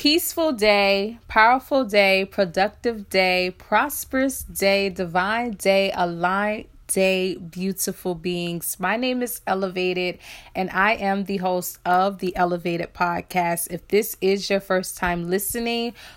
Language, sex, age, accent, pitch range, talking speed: English, female, 30-49, American, 175-215 Hz, 125 wpm